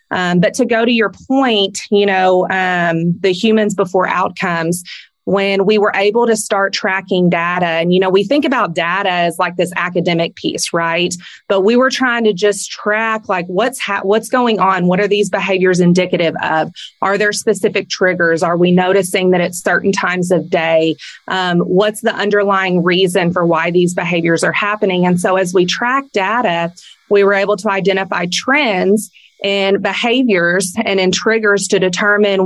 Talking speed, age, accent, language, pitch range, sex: 180 wpm, 30-49, American, English, 180-210 Hz, female